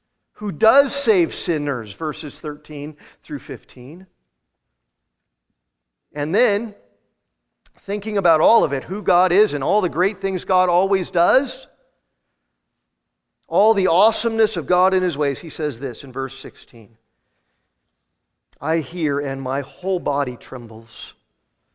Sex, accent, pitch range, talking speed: male, American, 120-155 Hz, 130 wpm